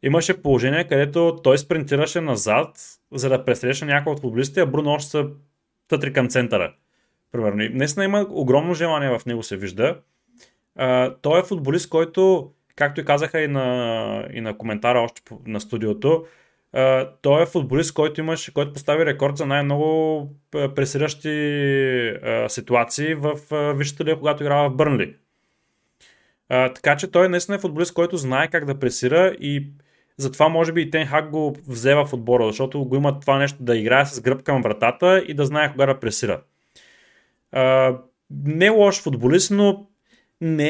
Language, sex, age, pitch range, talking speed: Bulgarian, male, 20-39, 130-160 Hz, 160 wpm